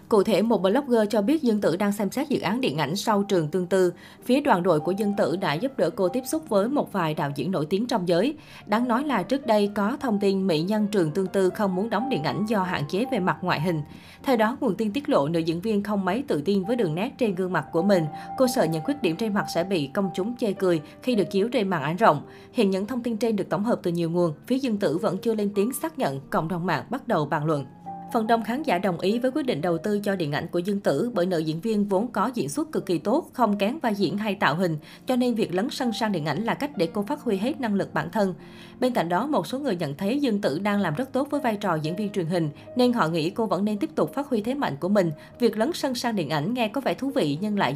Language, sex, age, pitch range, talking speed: Vietnamese, female, 20-39, 175-235 Hz, 295 wpm